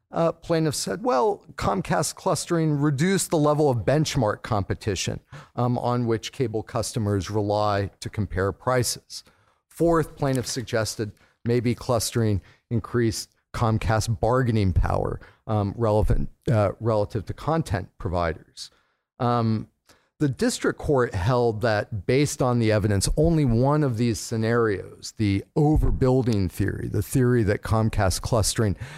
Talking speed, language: 125 wpm, English